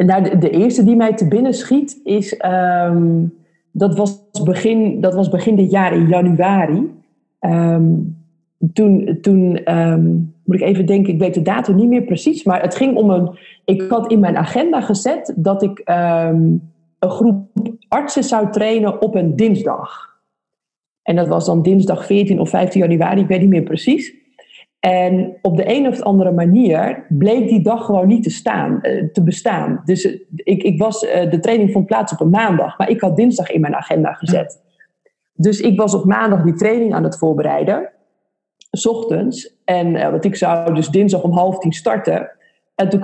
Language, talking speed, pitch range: Dutch, 170 wpm, 175-220 Hz